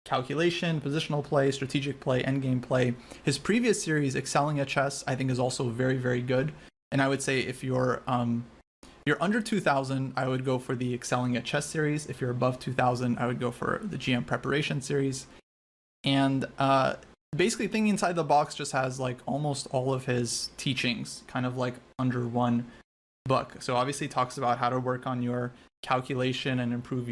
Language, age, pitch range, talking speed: English, 30-49, 125-140 Hz, 195 wpm